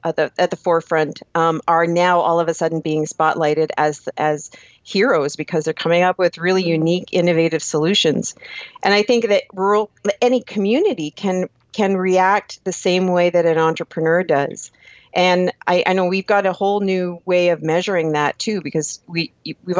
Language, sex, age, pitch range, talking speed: English, female, 40-59, 160-190 Hz, 180 wpm